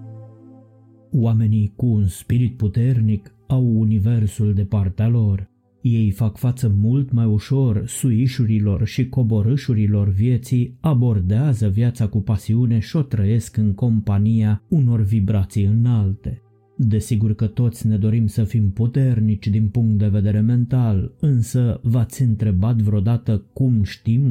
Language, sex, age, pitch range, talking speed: Romanian, male, 30-49, 105-120 Hz, 125 wpm